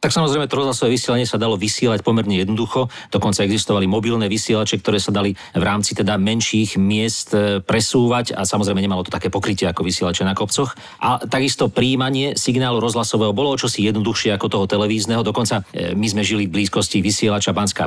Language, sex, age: Slovak, male, 40-59